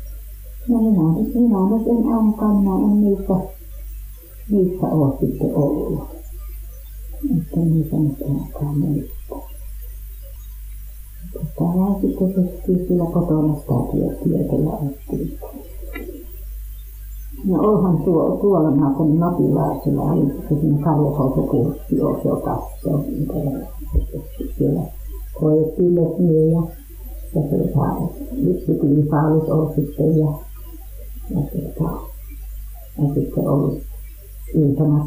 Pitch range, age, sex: 145-185 Hz, 50-69, female